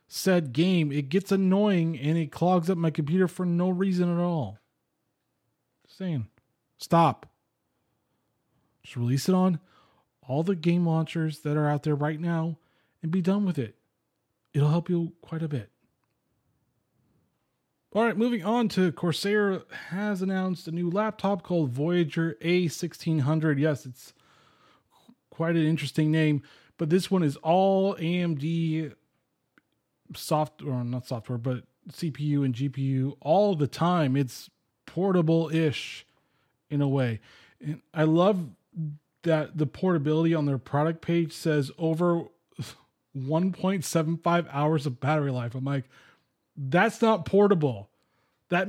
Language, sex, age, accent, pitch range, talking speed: English, male, 20-39, American, 145-180 Hz, 135 wpm